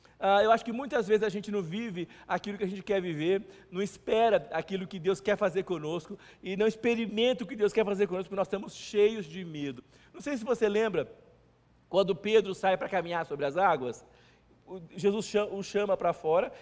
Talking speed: 200 wpm